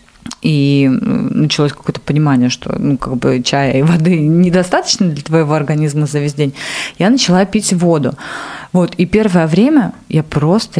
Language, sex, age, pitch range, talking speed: Russian, female, 30-49, 160-210 Hz, 155 wpm